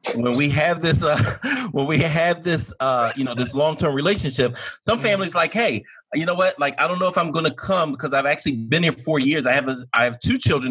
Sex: male